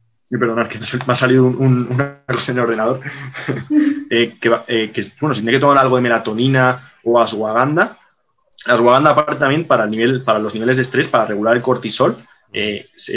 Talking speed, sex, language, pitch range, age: 195 wpm, male, Spanish, 115-130 Hz, 20-39